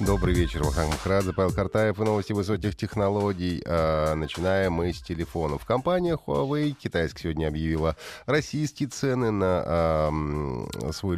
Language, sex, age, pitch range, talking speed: Russian, male, 30-49, 80-110 Hz, 120 wpm